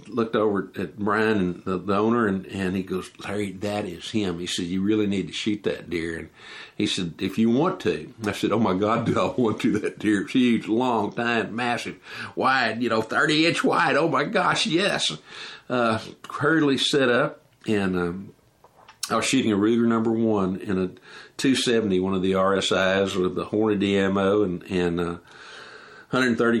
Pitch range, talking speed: 95-115 Hz, 190 wpm